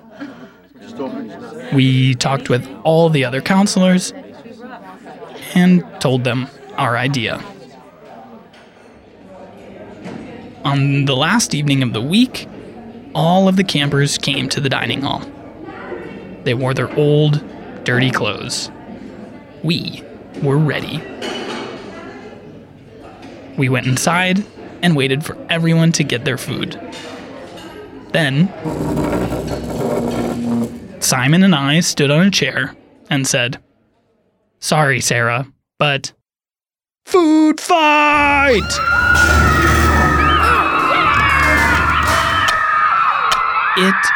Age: 20-39